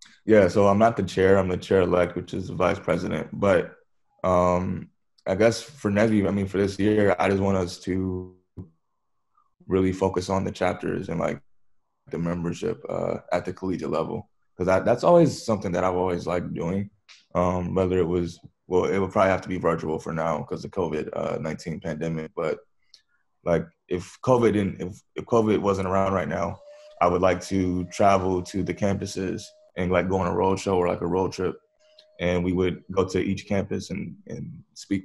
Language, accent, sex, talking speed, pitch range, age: English, American, male, 200 wpm, 90-100 Hz, 20-39